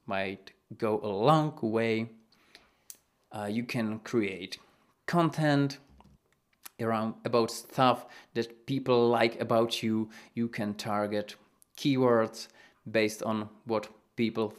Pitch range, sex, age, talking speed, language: 110-130 Hz, male, 30-49, 105 wpm, English